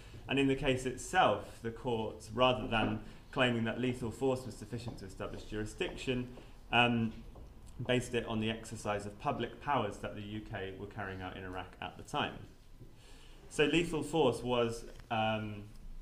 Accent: British